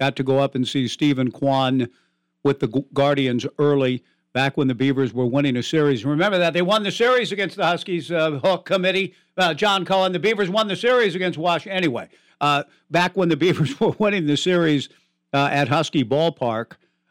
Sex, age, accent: male, 60-79, American